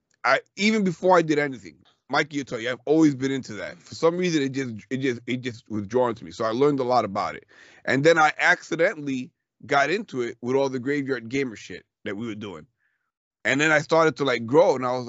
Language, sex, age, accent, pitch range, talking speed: English, male, 30-49, American, 120-145 Hz, 245 wpm